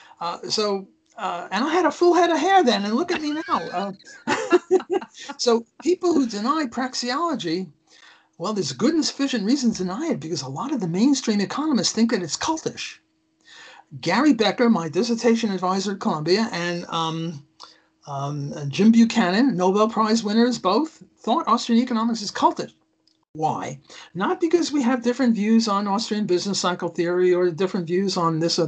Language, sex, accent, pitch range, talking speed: English, male, American, 175-245 Hz, 170 wpm